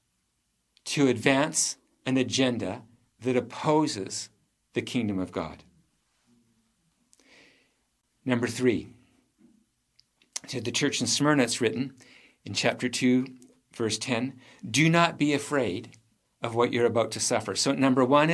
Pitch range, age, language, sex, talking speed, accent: 115-135 Hz, 50-69, English, male, 120 wpm, American